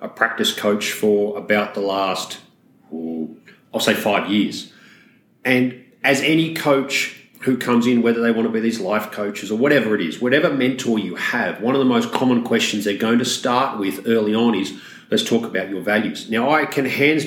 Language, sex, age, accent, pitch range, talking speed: English, male, 40-59, Australian, 105-135 Hz, 200 wpm